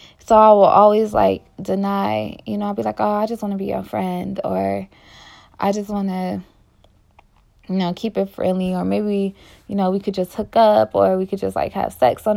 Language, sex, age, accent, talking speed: English, female, 20-39, American, 225 wpm